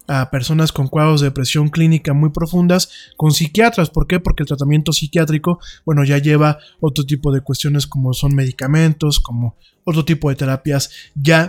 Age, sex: 20-39, male